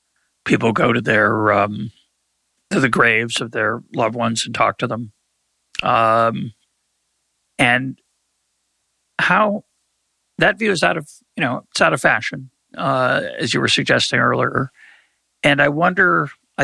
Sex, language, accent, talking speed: male, English, American, 155 wpm